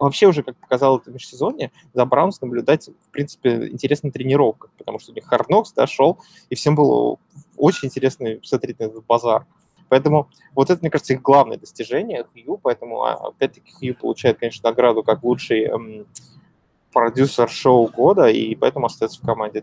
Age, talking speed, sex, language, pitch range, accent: 20-39, 170 wpm, male, Russian, 115-145 Hz, native